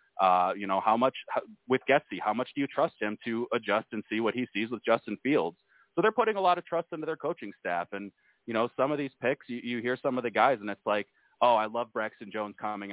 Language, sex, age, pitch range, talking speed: English, male, 30-49, 105-130 Hz, 265 wpm